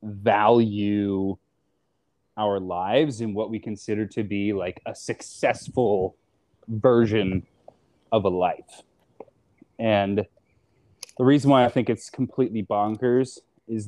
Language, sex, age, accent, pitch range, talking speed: English, male, 20-39, American, 110-135 Hz, 110 wpm